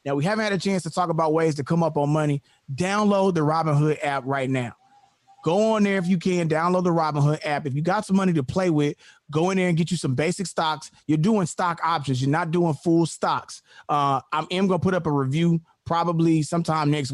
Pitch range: 155-195 Hz